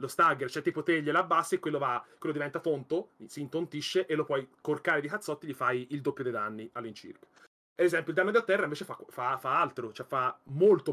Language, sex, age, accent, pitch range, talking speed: Italian, male, 30-49, native, 145-225 Hz, 235 wpm